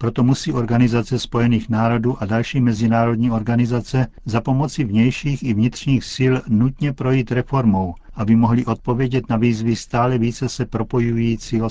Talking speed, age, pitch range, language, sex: 140 wpm, 50-69, 110-125 Hz, Czech, male